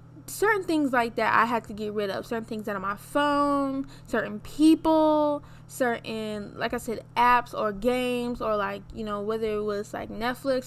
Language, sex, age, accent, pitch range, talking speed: English, female, 10-29, American, 205-245 Hz, 185 wpm